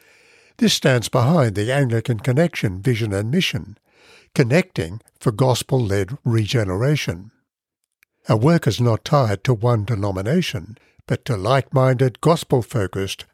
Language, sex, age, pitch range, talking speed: English, male, 60-79, 110-140 Hz, 110 wpm